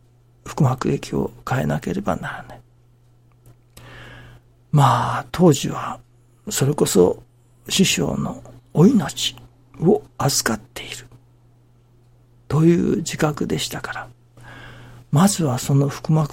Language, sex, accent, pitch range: Japanese, male, native, 120-145 Hz